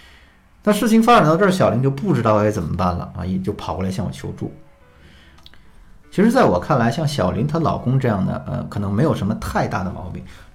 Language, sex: Chinese, male